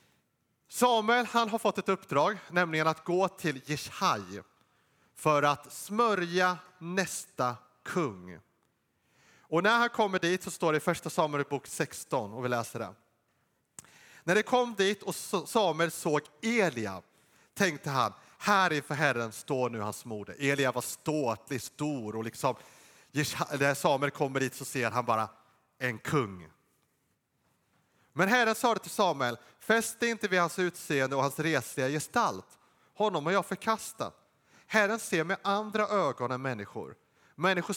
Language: Swedish